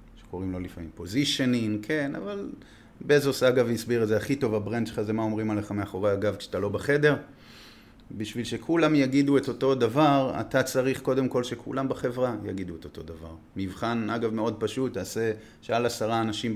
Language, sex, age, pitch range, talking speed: Hebrew, male, 30-49, 100-130 Hz, 175 wpm